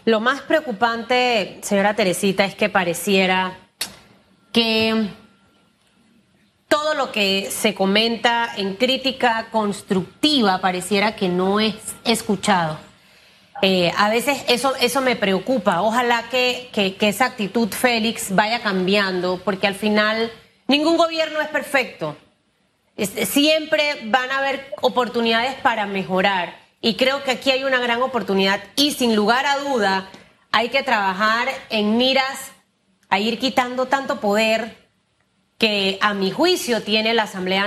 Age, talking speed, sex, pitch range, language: 30-49, 130 wpm, female, 200-260 Hz, Spanish